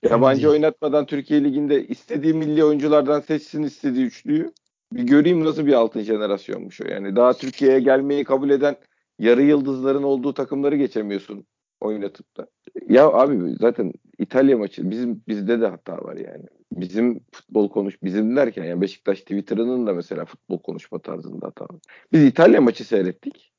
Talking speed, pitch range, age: 155 wpm, 120-155 Hz, 40-59